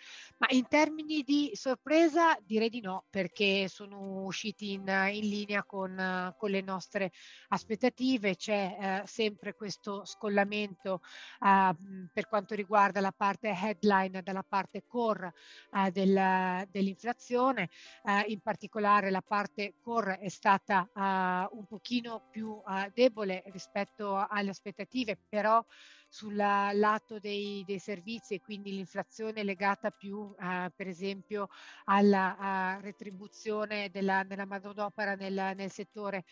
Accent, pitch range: native, 190-210 Hz